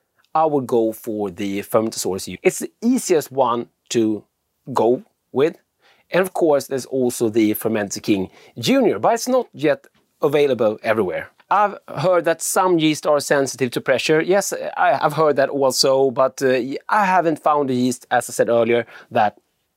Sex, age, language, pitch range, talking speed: male, 30-49, English, 120-160 Hz, 165 wpm